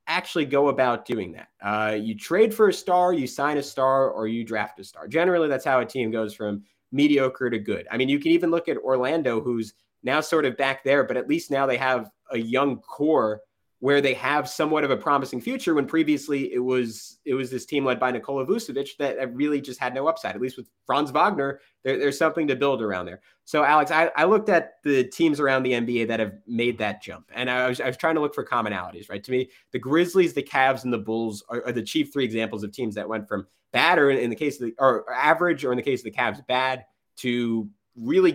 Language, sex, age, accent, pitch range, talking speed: English, male, 20-39, American, 115-145 Hz, 245 wpm